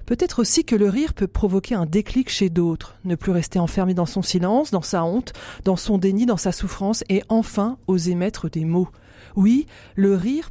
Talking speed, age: 205 wpm, 40-59